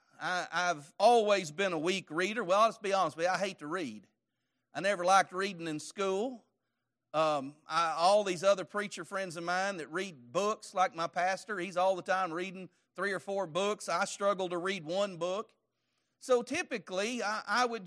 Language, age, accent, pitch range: English, 40-59, American, 175-215 Hz